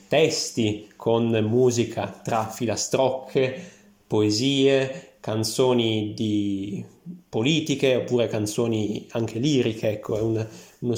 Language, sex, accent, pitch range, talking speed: Italian, male, native, 110-130 Hz, 95 wpm